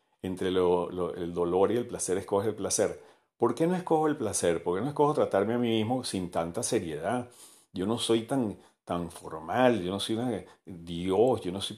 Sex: male